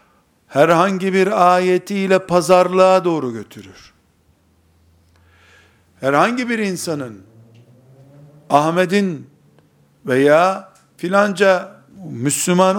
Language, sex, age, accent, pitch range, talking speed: Turkish, male, 60-79, native, 145-190 Hz, 60 wpm